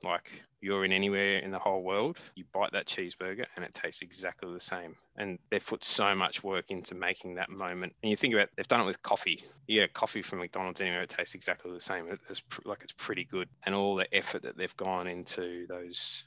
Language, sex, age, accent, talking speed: English, male, 20-39, Australian, 225 wpm